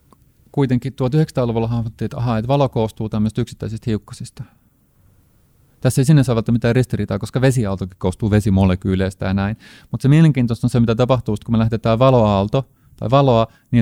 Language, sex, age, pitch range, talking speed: Finnish, male, 30-49, 100-125 Hz, 155 wpm